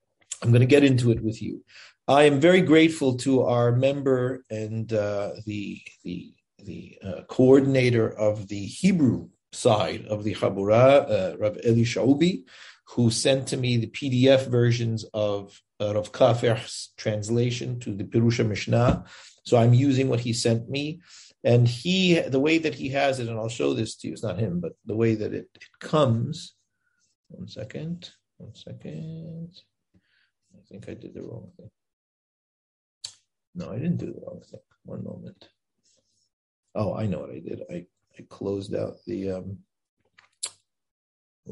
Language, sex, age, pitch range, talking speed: English, male, 50-69, 110-140 Hz, 160 wpm